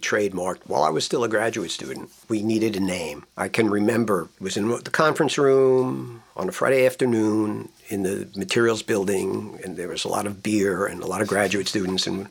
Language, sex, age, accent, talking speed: English, male, 50-69, American, 210 wpm